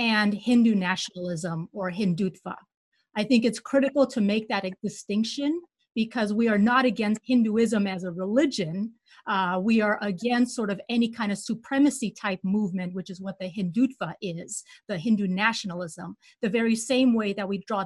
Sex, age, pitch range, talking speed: female, 30-49, 195-235 Hz, 170 wpm